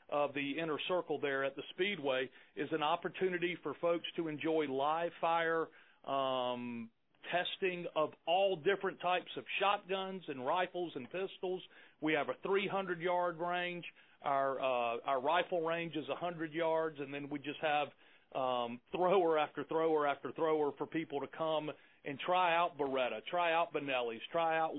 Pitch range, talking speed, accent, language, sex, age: 145-180 Hz, 165 wpm, American, English, male, 40-59